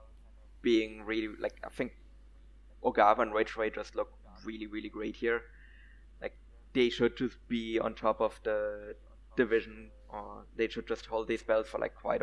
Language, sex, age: English, male, 20-39